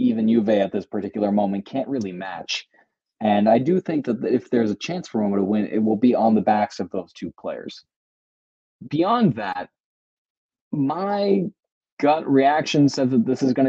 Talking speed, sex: 185 wpm, male